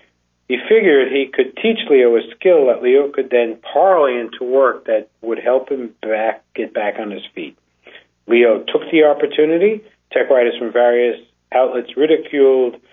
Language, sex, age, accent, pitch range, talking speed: English, male, 50-69, American, 115-150 Hz, 160 wpm